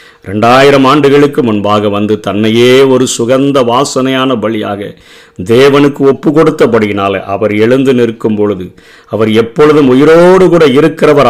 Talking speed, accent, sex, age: 110 wpm, native, male, 50-69